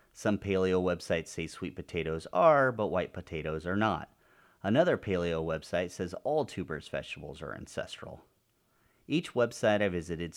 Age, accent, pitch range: 30-49, American, 85-105 Hz